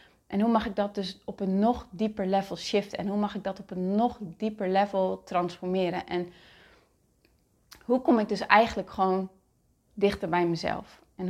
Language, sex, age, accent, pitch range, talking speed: Dutch, female, 30-49, Dutch, 185-215 Hz, 180 wpm